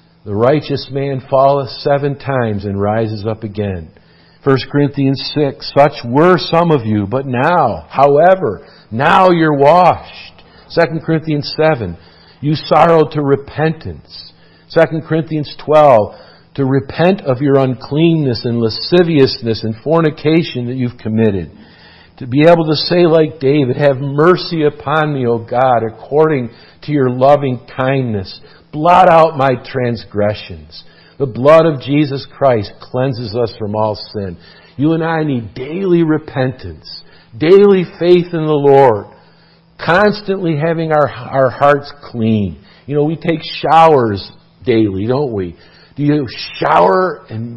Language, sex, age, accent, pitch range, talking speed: English, male, 50-69, American, 115-160 Hz, 135 wpm